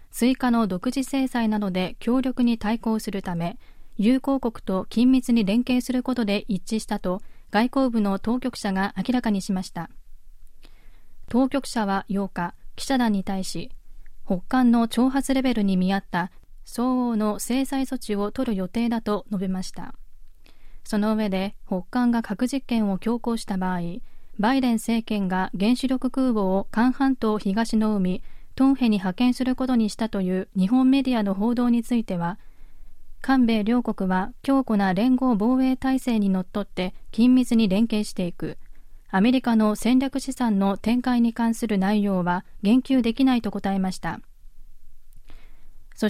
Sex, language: female, Japanese